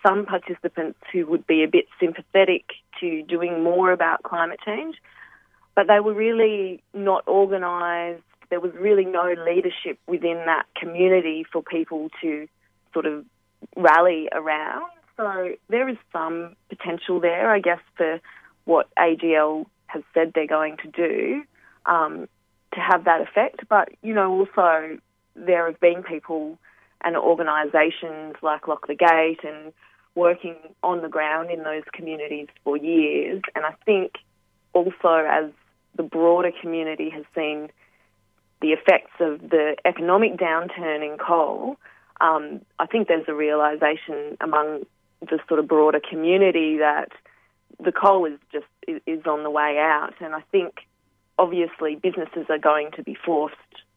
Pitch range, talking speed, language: 155-180 Hz, 145 wpm, English